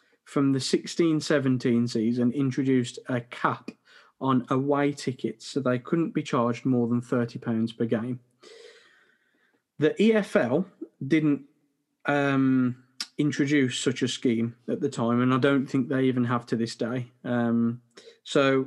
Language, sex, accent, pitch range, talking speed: English, male, British, 125-155 Hz, 140 wpm